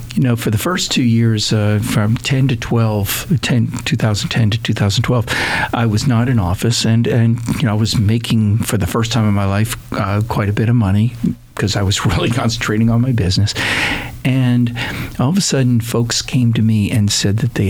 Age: 50-69